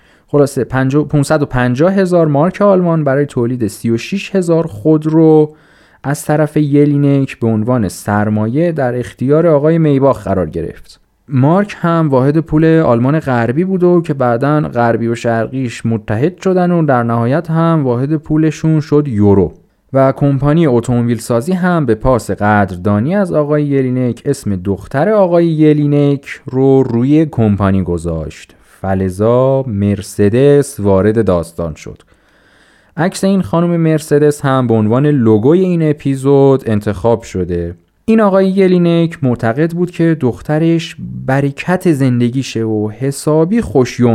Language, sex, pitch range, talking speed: Persian, male, 110-155 Hz, 125 wpm